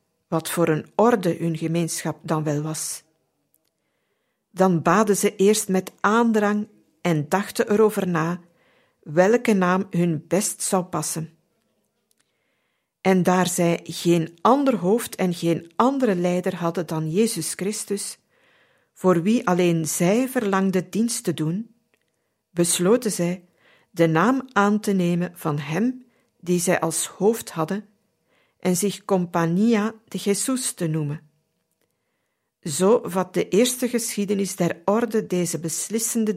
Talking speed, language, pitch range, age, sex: 125 wpm, Dutch, 165-215 Hz, 50-69, female